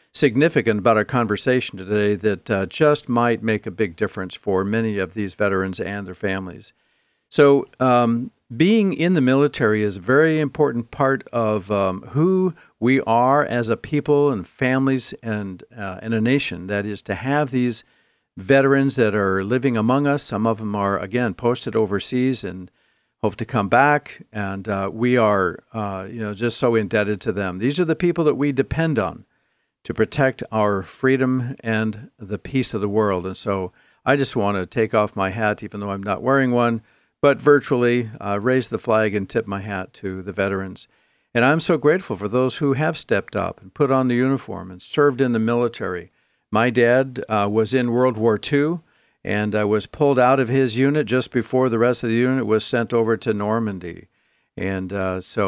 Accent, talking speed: American, 195 wpm